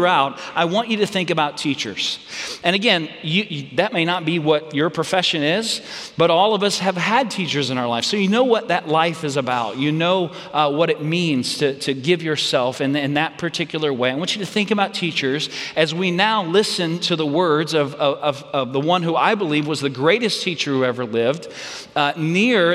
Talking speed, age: 210 wpm, 40-59